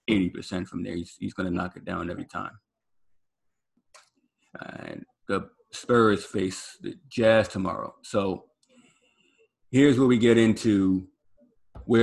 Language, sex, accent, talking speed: English, male, American, 125 wpm